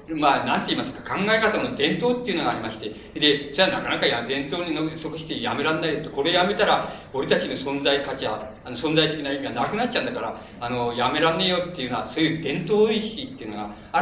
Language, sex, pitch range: Japanese, male, 125-165 Hz